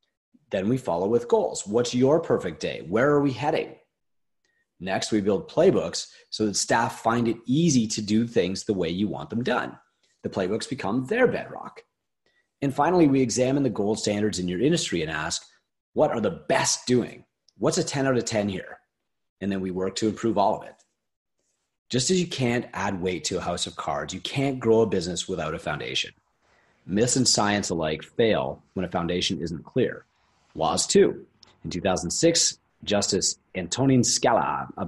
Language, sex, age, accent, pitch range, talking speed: English, male, 30-49, American, 95-125 Hz, 190 wpm